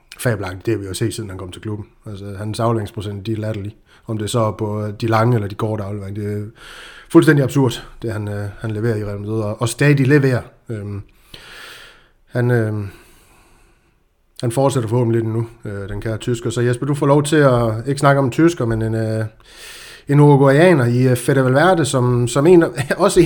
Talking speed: 205 wpm